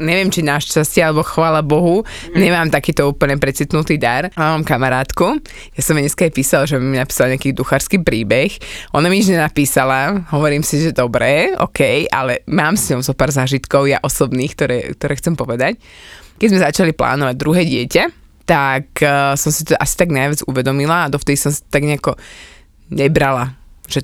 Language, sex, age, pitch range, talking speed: Slovak, female, 20-39, 135-165 Hz, 175 wpm